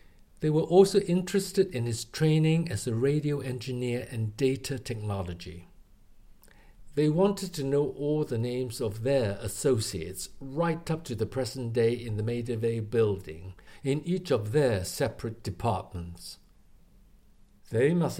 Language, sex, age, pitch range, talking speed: English, male, 60-79, 105-155 Hz, 140 wpm